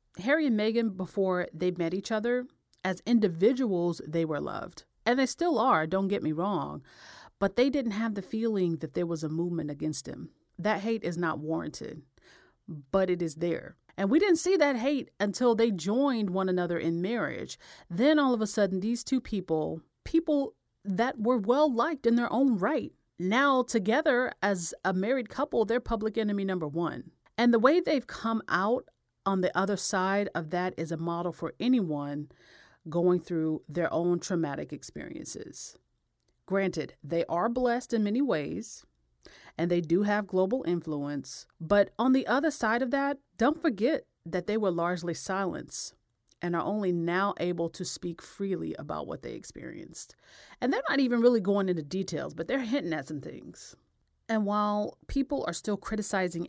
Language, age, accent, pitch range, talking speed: English, 40-59, American, 170-235 Hz, 175 wpm